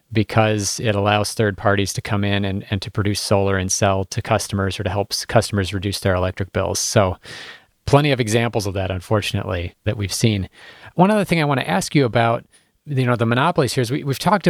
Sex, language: male, English